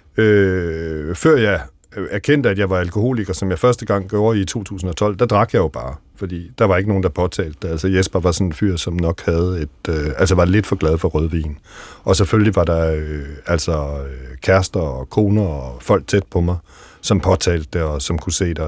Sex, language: male, Danish